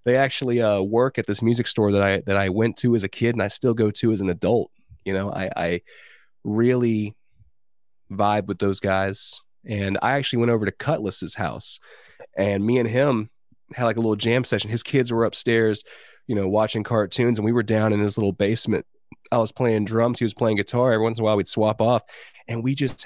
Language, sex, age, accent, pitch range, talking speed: English, male, 20-39, American, 100-120 Hz, 225 wpm